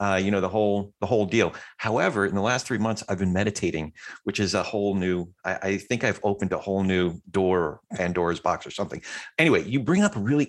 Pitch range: 100-130 Hz